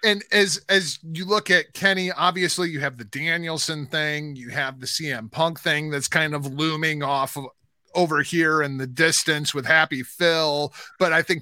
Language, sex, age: English, male, 30-49